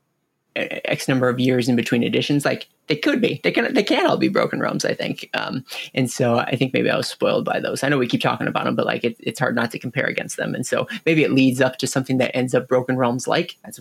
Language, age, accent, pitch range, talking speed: English, 20-39, American, 125-135 Hz, 280 wpm